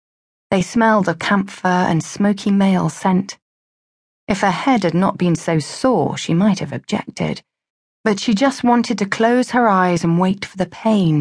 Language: English